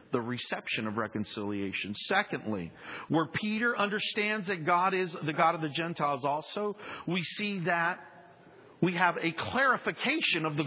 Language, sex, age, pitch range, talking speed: English, male, 40-59, 140-195 Hz, 145 wpm